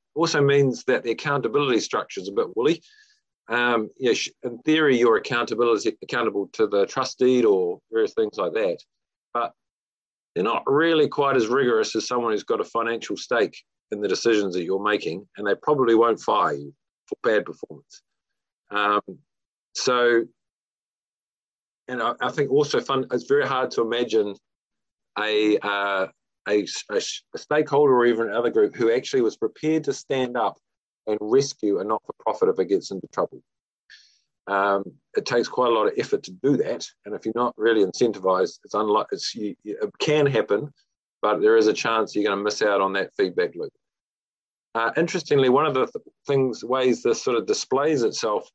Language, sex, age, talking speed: English, male, 40-59, 180 wpm